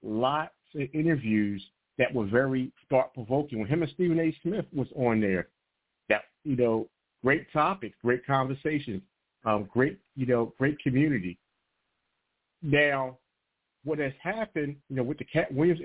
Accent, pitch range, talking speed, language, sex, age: American, 130-180 Hz, 150 wpm, English, male, 50-69